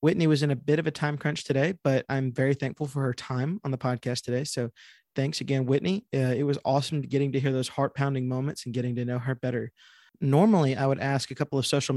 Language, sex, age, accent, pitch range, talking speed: English, male, 20-39, American, 130-150 Hz, 245 wpm